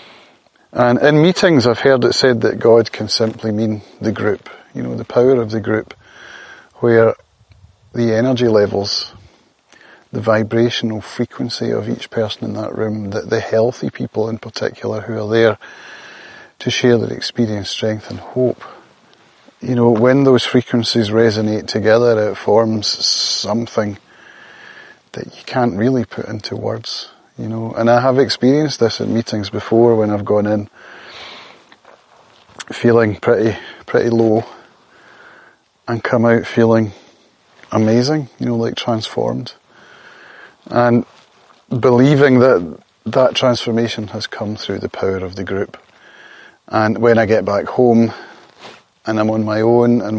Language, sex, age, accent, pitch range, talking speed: English, male, 30-49, British, 110-120 Hz, 140 wpm